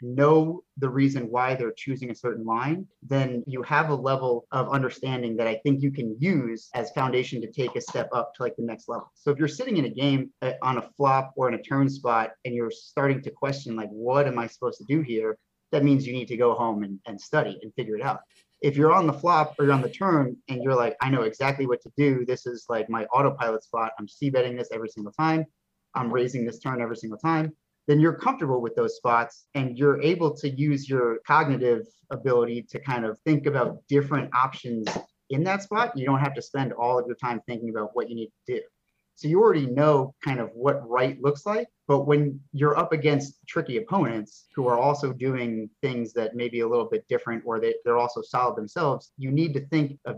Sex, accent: male, American